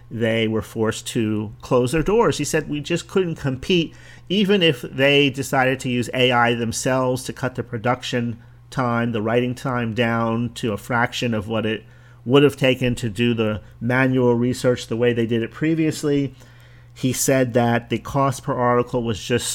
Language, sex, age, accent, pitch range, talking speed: English, male, 40-59, American, 115-135 Hz, 180 wpm